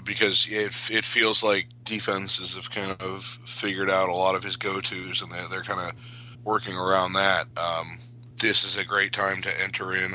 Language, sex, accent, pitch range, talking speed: English, male, American, 95-120 Hz, 185 wpm